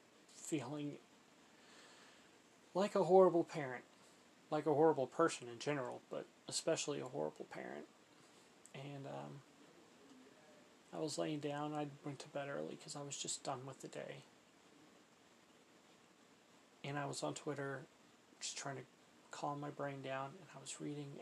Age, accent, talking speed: 30-49, American, 145 wpm